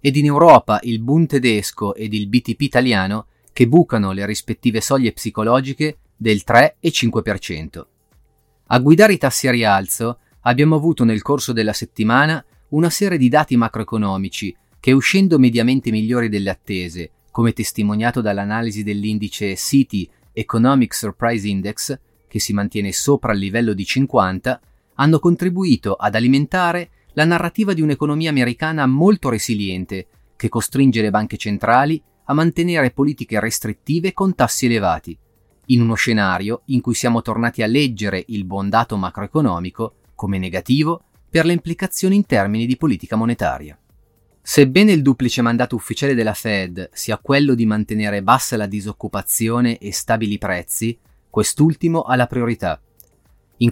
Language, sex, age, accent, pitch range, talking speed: Italian, male, 30-49, native, 105-135 Hz, 140 wpm